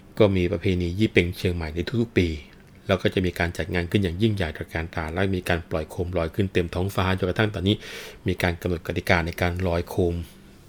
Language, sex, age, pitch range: Thai, male, 20-39, 85-100 Hz